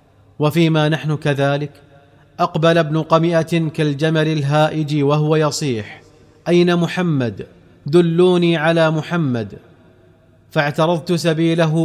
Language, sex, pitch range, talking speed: Arabic, male, 145-160 Hz, 85 wpm